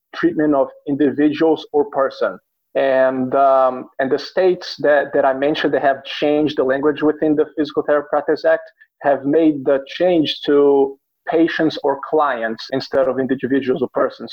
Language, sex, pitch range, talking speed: English, male, 135-150 Hz, 155 wpm